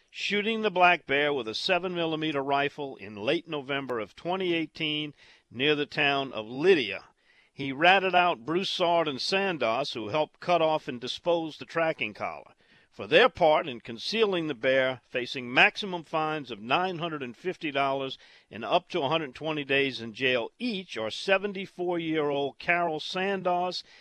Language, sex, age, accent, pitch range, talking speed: English, male, 50-69, American, 130-180 Hz, 145 wpm